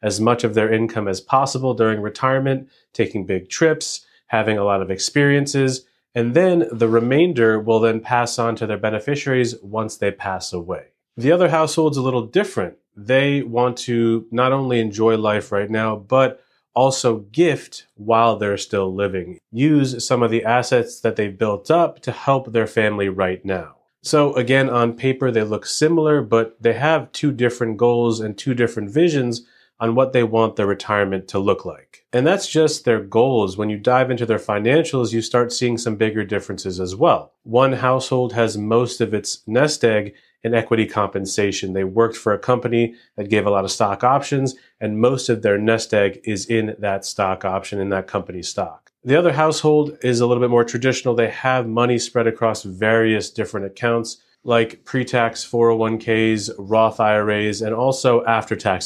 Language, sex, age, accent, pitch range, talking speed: English, male, 30-49, American, 105-125 Hz, 180 wpm